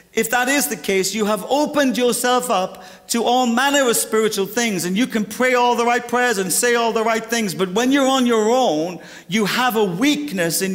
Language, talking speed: English, 230 wpm